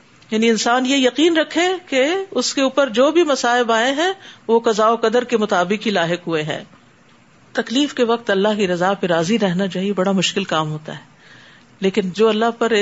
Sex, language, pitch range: female, Urdu, 185-235 Hz